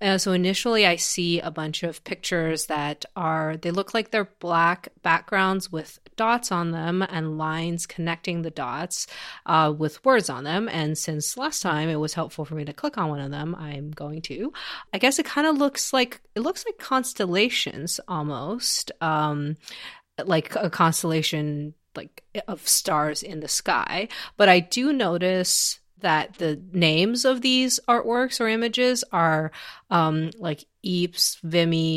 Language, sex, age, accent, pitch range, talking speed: English, female, 30-49, American, 155-195 Hz, 165 wpm